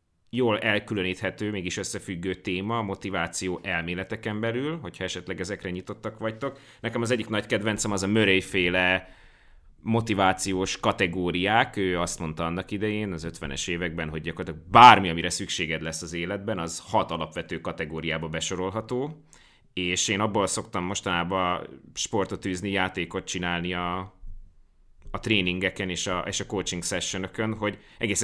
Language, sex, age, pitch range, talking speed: Hungarian, male, 30-49, 85-115 Hz, 135 wpm